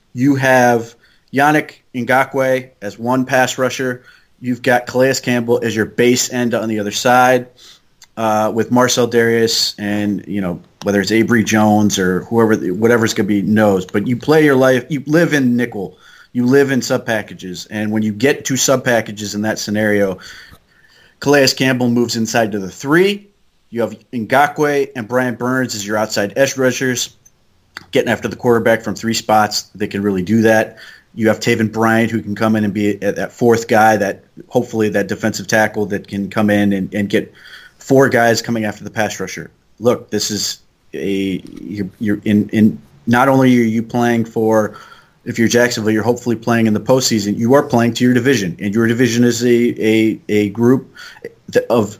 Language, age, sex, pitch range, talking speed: English, 30-49, male, 105-125 Hz, 190 wpm